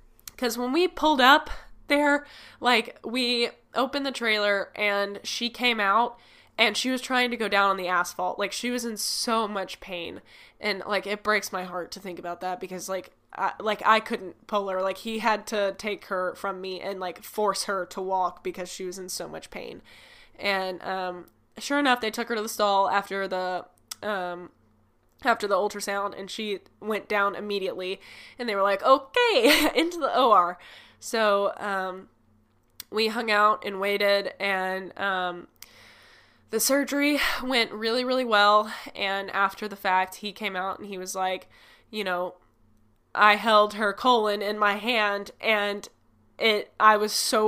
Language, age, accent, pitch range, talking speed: English, 10-29, American, 185-220 Hz, 175 wpm